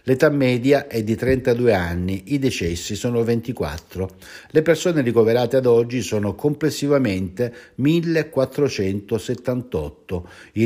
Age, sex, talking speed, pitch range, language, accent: 60-79, male, 105 wpm, 95-130 Hz, Italian, native